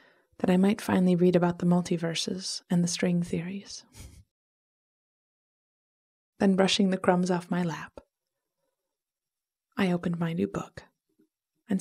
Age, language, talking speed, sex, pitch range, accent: 30-49, English, 125 wpm, female, 170-200 Hz, American